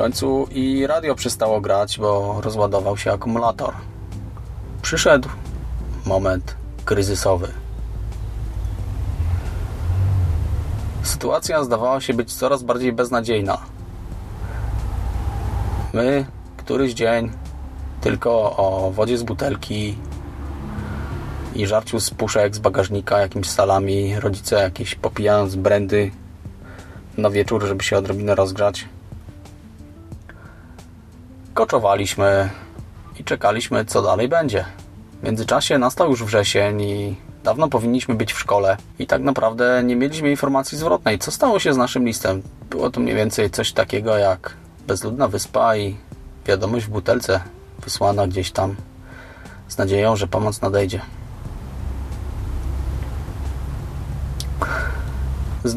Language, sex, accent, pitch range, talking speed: English, male, Polish, 90-110 Hz, 105 wpm